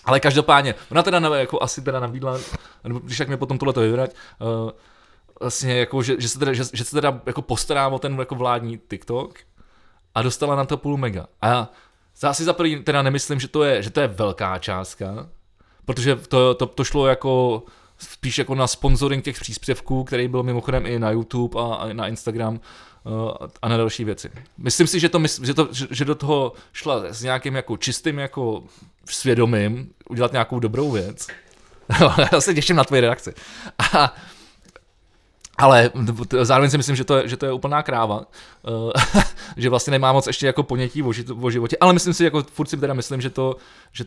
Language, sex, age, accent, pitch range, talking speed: Czech, male, 20-39, native, 115-140 Hz, 185 wpm